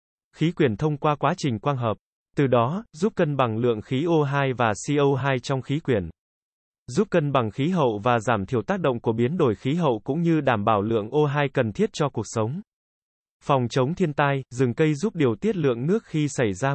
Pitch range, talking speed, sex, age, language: 120-155 Hz, 220 wpm, male, 20-39, Vietnamese